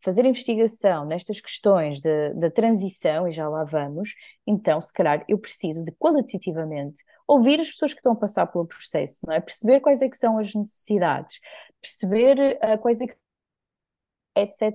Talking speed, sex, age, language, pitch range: 170 wpm, female, 20-39, Portuguese, 165-210 Hz